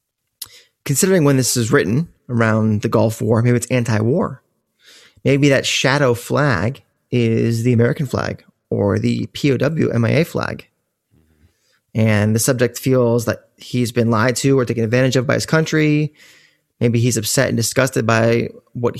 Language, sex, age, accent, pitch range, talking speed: English, male, 20-39, American, 115-140 Hz, 150 wpm